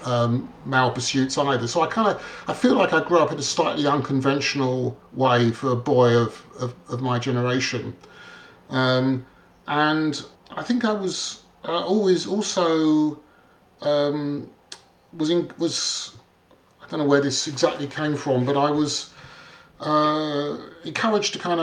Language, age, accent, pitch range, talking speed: English, 40-59, British, 130-160 Hz, 155 wpm